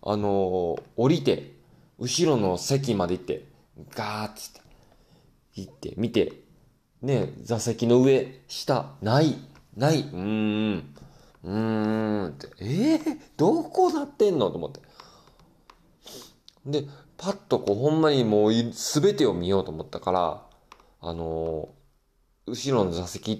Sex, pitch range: male, 105-160 Hz